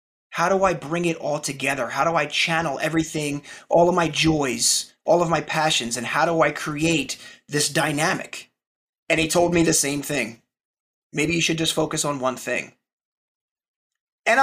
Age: 30-49